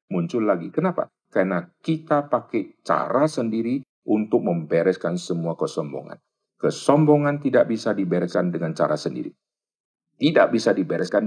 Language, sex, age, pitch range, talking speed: Indonesian, male, 50-69, 105-155 Hz, 115 wpm